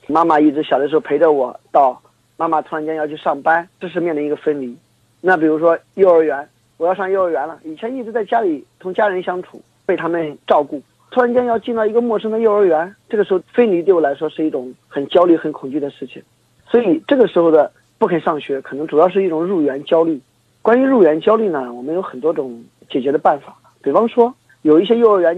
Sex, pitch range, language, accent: male, 155-205 Hz, Chinese, native